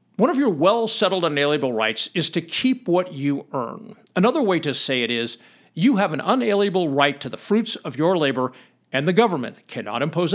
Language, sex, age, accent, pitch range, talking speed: English, male, 50-69, American, 145-220 Hz, 195 wpm